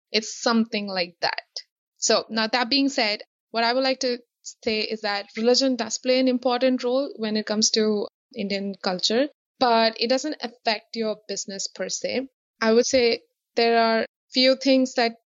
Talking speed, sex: 175 wpm, female